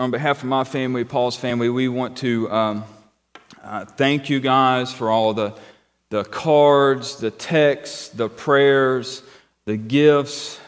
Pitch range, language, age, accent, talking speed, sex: 115-145 Hz, English, 30-49, American, 145 wpm, male